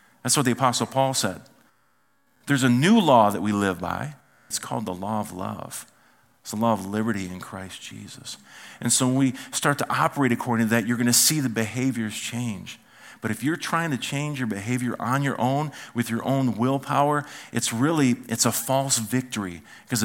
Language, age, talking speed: English, 40-59, 200 wpm